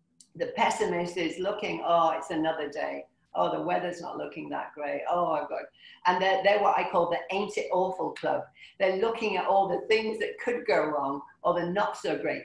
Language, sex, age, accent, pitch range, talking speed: English, female, 50-69, British, 155-220 Hz, 210 wpm